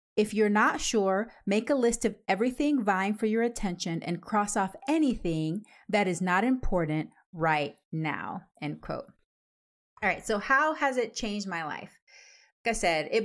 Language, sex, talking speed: English, female, 170 wpm